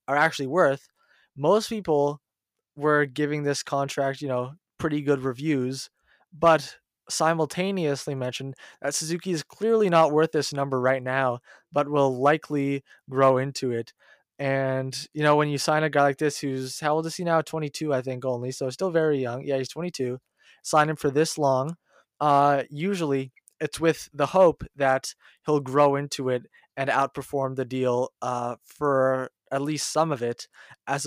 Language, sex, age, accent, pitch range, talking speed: English, male, 20-39, American, 130-150 Hz, 170 wpm